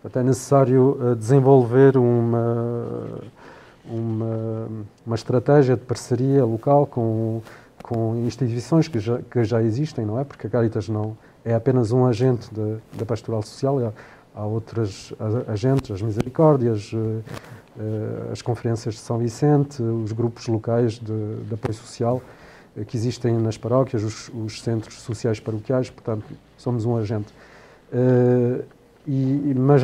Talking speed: 135 wpm